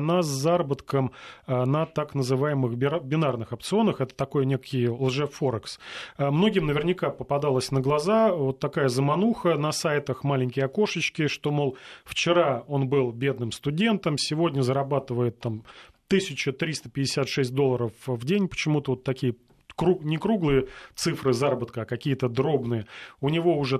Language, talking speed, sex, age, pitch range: Russian, 130 wpm, male, 30-49, 130-160 Hz